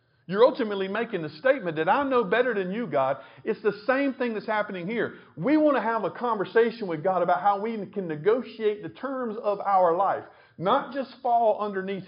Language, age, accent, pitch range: English, 50-69, American, 125-210 Hz